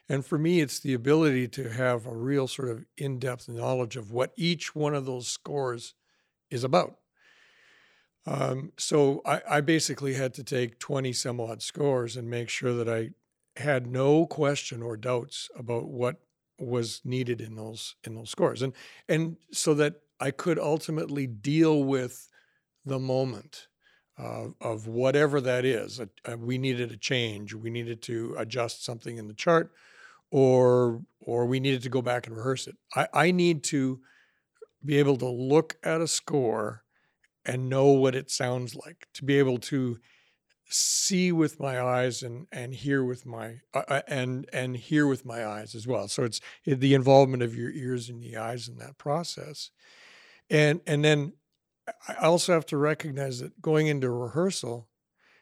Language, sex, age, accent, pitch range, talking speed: English, male, 60-79, American, 120-150 Hz, 170 wpm